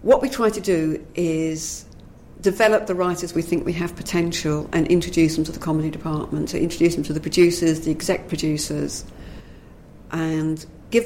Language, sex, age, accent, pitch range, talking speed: English, female, 50-69, British, 155-180 Hz, 180 wpm